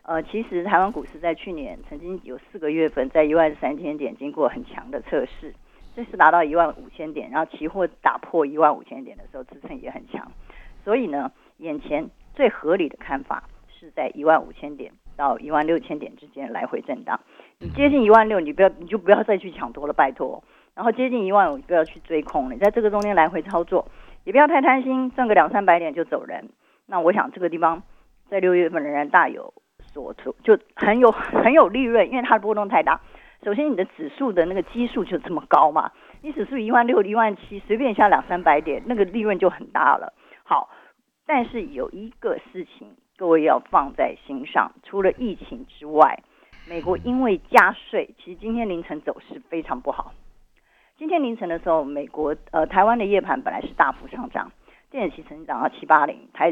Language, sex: Chinese, female